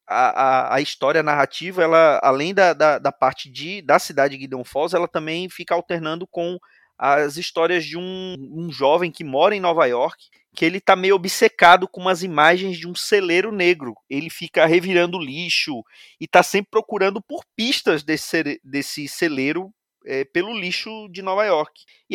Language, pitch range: Portuguese, 145-200 Hz